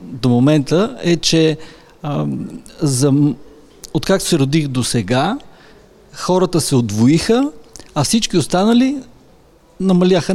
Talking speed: 110 wpm